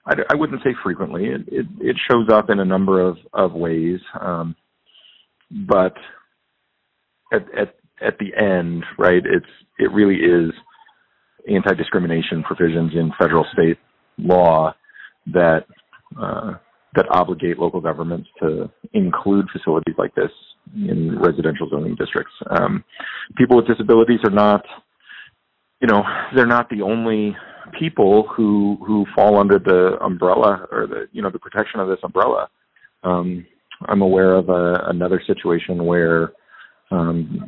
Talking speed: 135 wpm